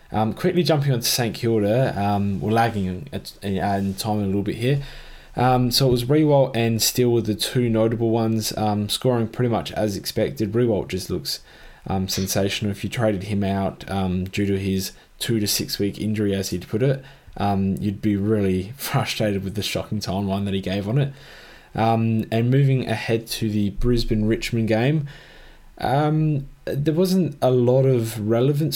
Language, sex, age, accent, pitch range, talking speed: English, male, 20-39, Australian, 100-120 Hz, 180 wpm